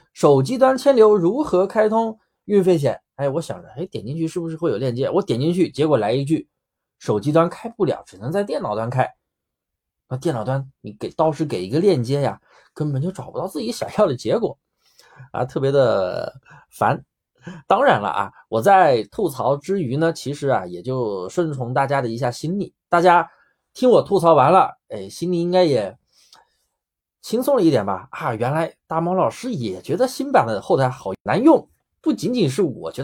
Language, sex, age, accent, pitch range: Chinese, male, 20-39, native, 120-175 Hz